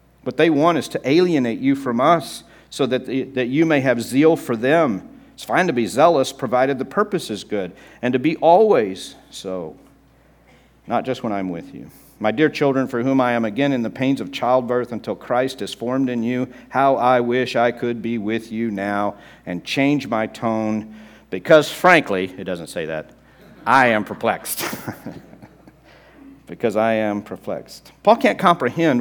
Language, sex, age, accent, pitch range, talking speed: English, male, 50-69, American, 120-200 Hz, 180 wpm